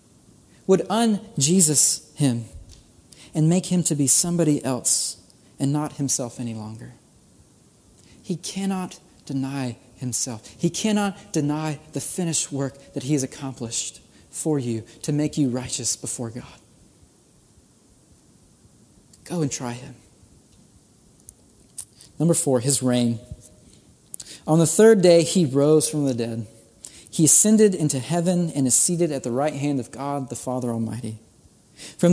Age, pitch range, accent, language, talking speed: 30-49, 125-175 Hz, American, English, 135 wpm